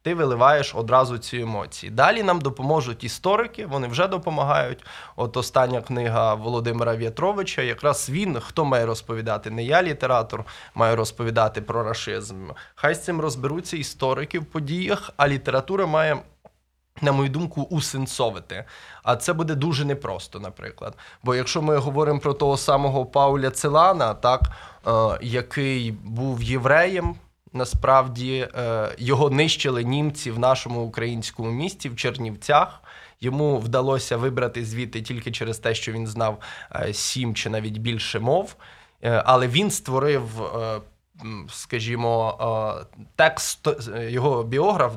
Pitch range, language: 115-145 Hz, Ukrainian